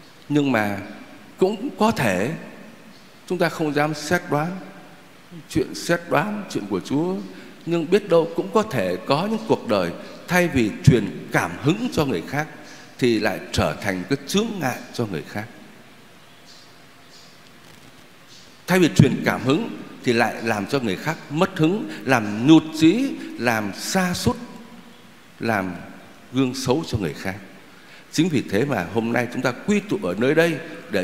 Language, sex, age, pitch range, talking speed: Vietnamese, male, 60-79, 105-160 Hz, 160 wpm